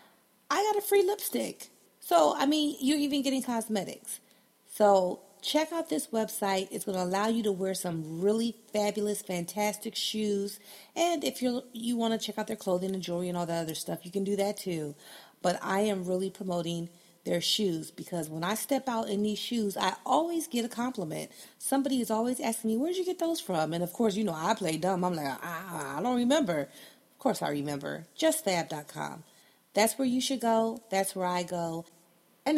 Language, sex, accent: English, female, American